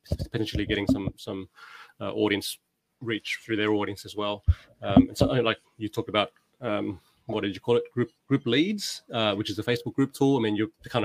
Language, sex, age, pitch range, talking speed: English, male, 20-39, 105-120 Hz, 210 wpm